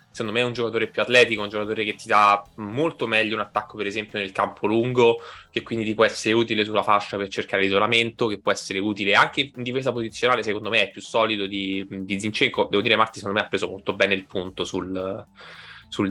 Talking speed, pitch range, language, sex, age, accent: 225 wpm, 100-120 Hz, Italian, male, 20-39, native